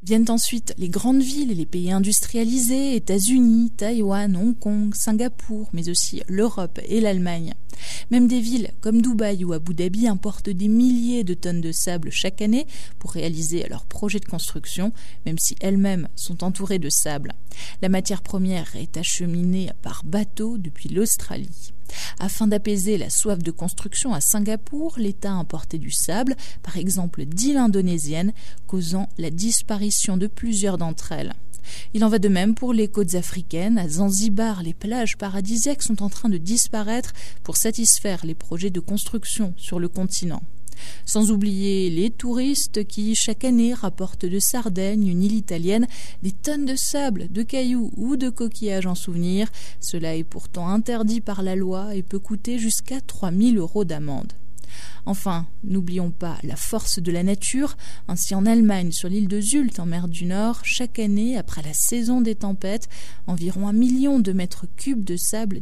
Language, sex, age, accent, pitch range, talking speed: French, female, 20-39, French, 175-225 Hz, 165 wpm